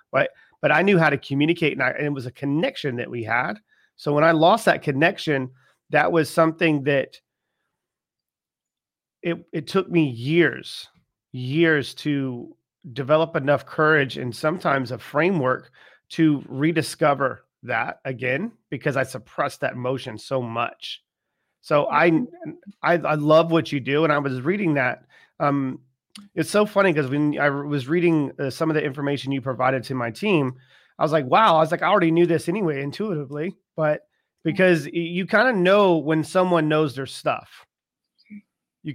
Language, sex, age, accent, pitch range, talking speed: English, male, 40-59, American, 135-165 Hz, 170 wpm